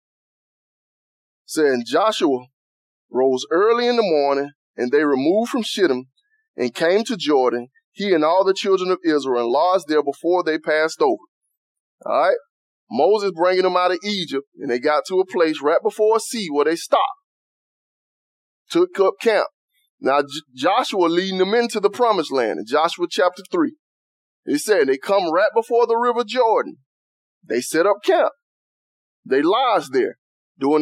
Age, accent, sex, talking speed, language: 30-49, American, male, 160 wpm, English